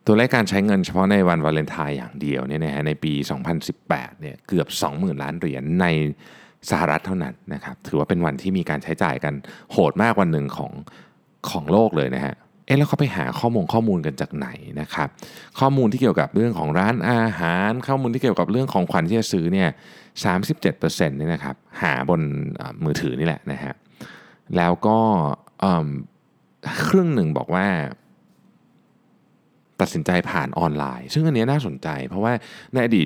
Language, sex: Thai, male